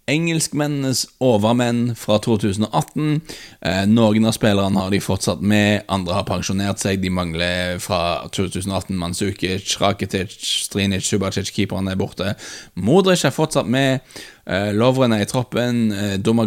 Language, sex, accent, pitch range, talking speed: English, male, Norwegian, 100-135 Hz, 140 wpm